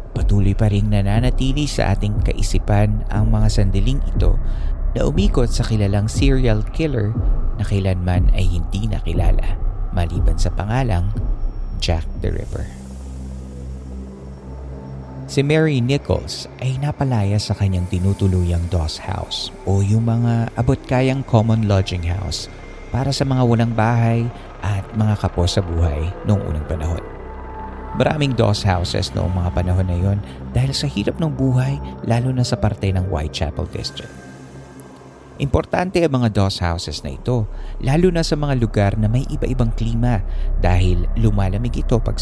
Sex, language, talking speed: male, Filipino, 140 wpm